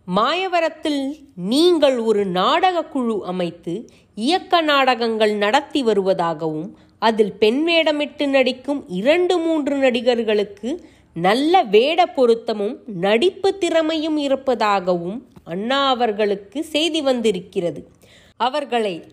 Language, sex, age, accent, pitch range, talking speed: Tamil, female, 30-49, native, 200-310 Hz, 90 wpm